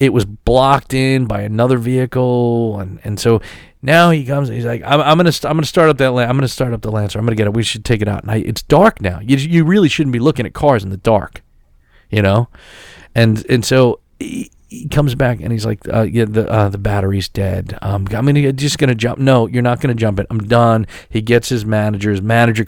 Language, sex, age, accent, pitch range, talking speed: English, male, 40-59, American, 105-135 Hz, 250 wpm